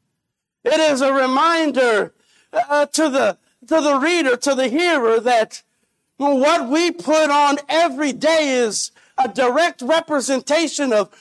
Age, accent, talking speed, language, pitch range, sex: 50-69, American, 130 wpm, English, 265-320 Hz, male